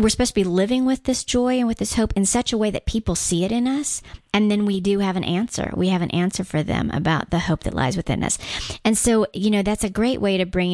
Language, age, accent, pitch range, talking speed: English, 40-59, American, 175-220 Hz, 290 wpm